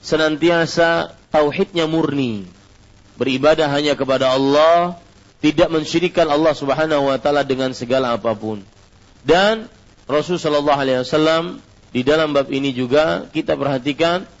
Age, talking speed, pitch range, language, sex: 40-59, 100 wpm, 125-165 Hz, Malay, male